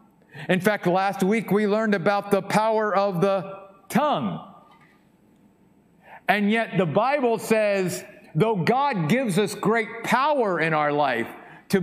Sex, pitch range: male, 150-205 Hz